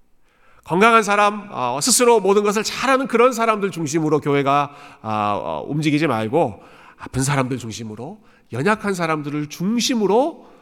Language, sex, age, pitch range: Korean, male, 40-59, 125-185 Hz